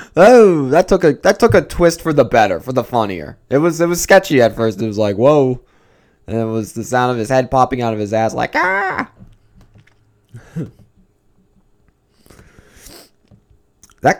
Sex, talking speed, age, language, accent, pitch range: male, 175 wpm, 20-39, English, American, 105-170 Hz